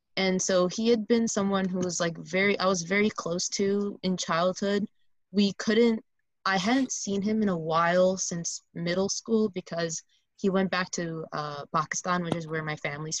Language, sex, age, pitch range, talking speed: English, female, 20-39, 165-195 Hz, 185 wpm